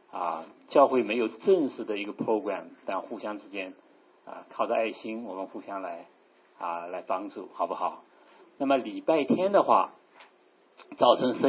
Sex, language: male, Chinese